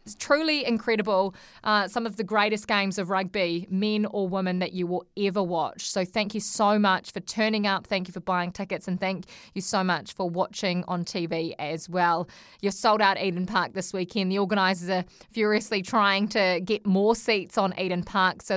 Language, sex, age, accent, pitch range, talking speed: English, female, 20-39, Australian, 185-215 Hz, 205 wpm